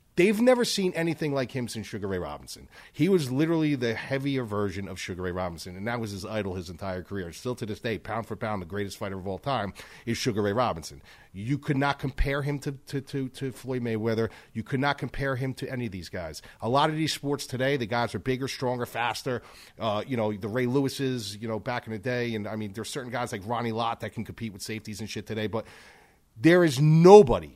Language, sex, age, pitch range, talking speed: English, male, 40-59, 105-140 Hz, 245 wpm